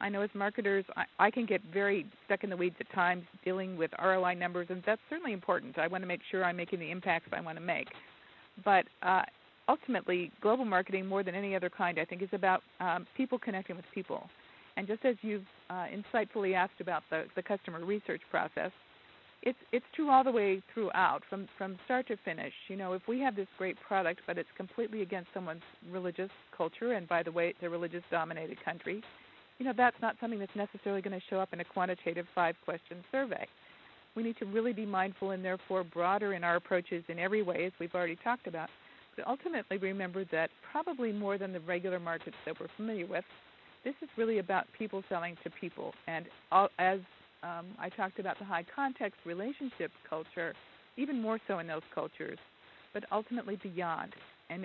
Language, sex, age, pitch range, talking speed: English, female, 50-69, 180-215 Hz, 200 wpm